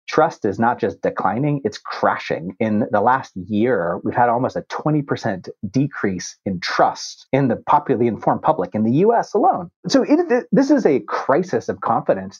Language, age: English, 30-49